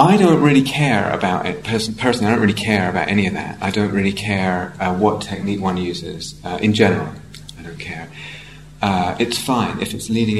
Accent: British